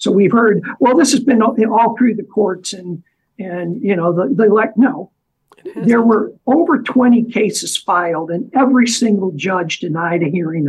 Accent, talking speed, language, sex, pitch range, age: American, 180 wpm, English, male, 180-245 Hz, 50-69